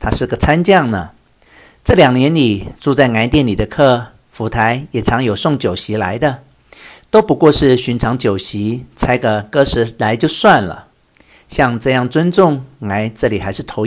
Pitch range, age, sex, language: 105-145 Hz, 50-69, male, Chinese